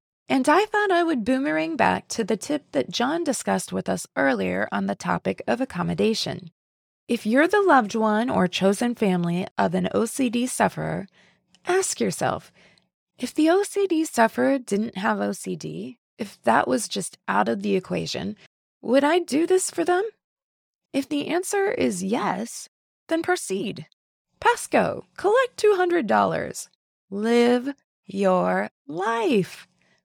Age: 20-39